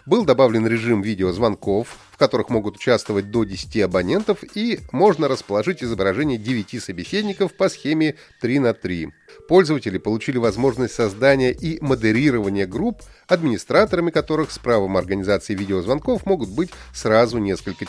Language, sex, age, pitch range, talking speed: Russian, male, 30-49, 105-170 Hz, 130 wpm